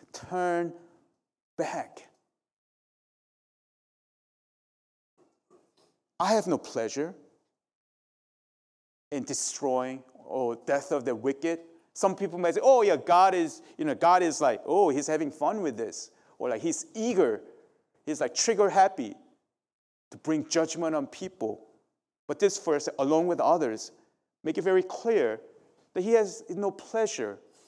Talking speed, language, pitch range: 130 wpm, English, 130-215 Hz